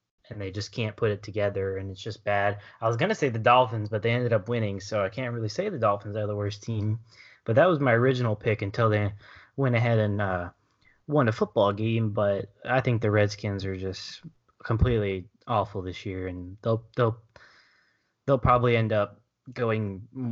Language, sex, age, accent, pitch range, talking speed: English, male, 10-29, American, 100-115 Hz, 200 wpm